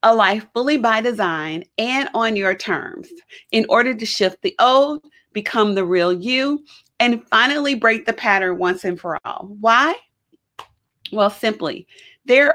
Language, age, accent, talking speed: English, 40-59, American, 155 wpm